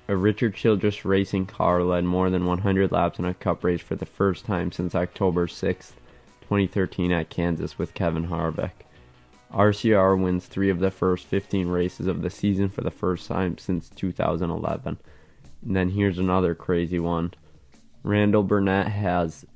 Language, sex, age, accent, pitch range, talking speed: English, male, 20-39, American, 85-100 Hz, 165 wpm